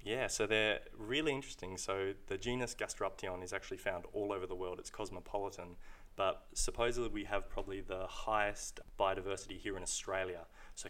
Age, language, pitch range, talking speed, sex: 20-39, English, 95-105 Hz, 165 wpm, male